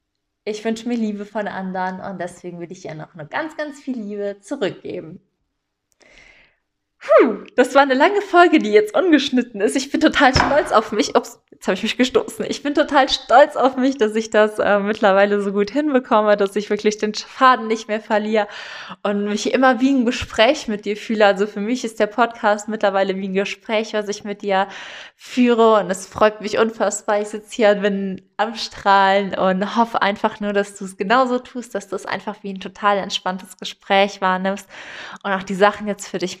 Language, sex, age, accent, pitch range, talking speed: German, female, 20-39, German, 195-230 Hz, 205 wpm